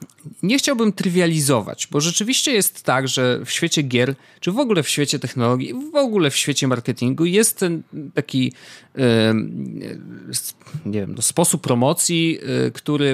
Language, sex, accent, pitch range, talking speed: Polish, male, native, 120-155 Hz, 165 wpm